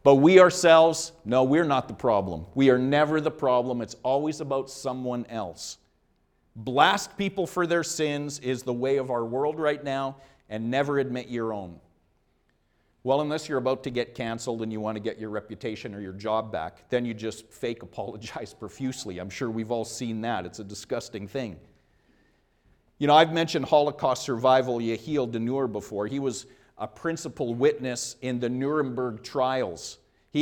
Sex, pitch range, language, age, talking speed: male, 120-155 Hz, English, 50-69, 175 wpm